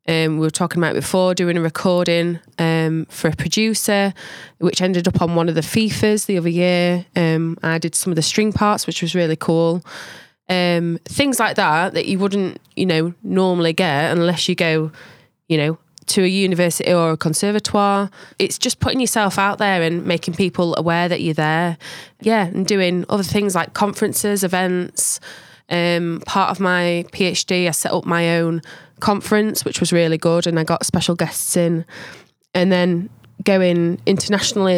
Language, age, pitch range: English, 20-39, 165-190 Hz